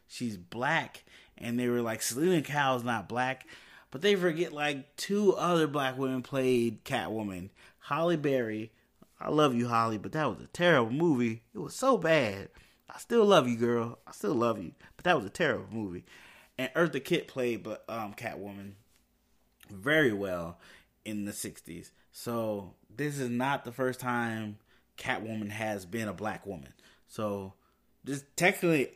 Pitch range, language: 105-155 Hz, English